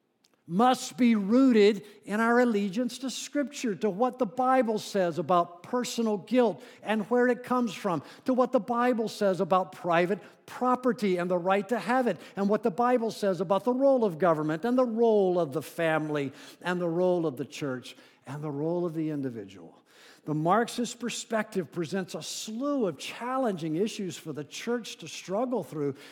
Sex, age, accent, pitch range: male, 50-69, American, 140-225 Hz